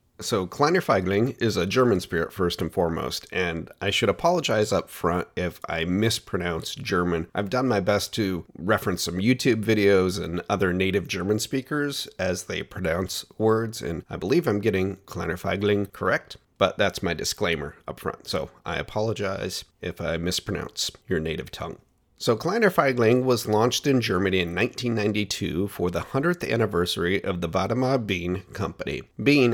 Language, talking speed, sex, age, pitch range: English, 165 wpm, male, 40-59, 95-130 Hz